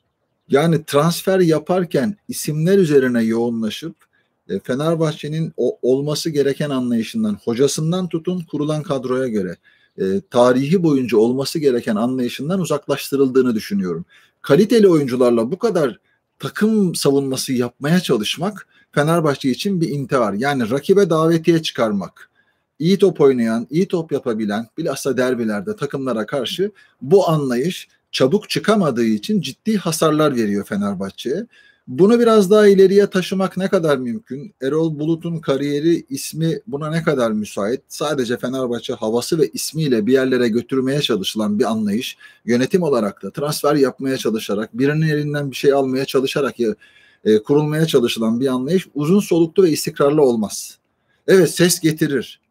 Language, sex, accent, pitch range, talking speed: Turkish, male, native, 125-180 Hz, 125 wpm